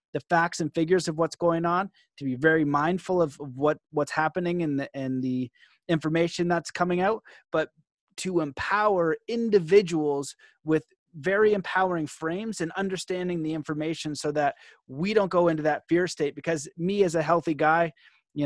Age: 30-49